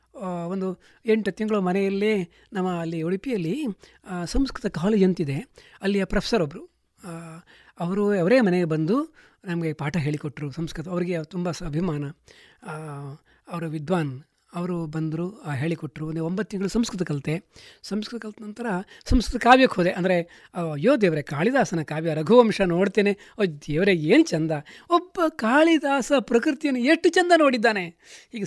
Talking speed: 120 wpm